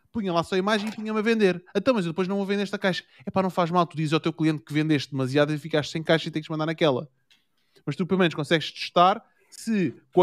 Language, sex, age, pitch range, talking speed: Portuguese, male, 20-39, 135-185 Hz, 285 wpm